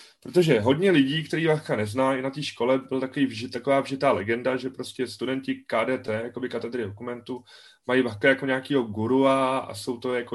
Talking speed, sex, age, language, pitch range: 180 wpm, male, 20-39, Czech, 125-150 Hz